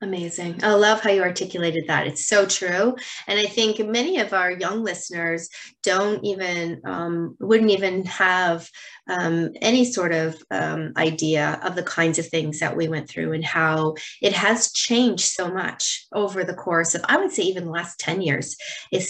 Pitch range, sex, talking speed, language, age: 165-205 Hz, female, 185 wpm, English, 30-49